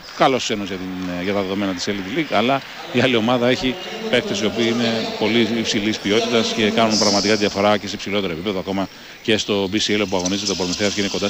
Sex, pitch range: male, 100-130 Hz